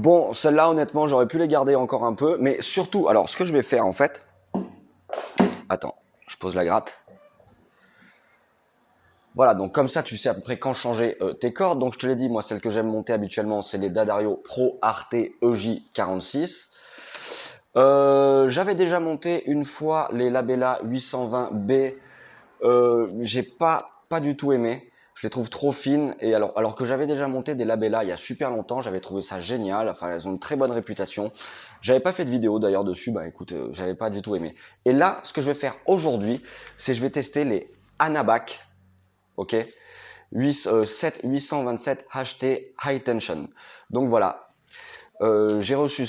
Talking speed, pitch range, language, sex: 185 wpm, 110-140 Hz, French, male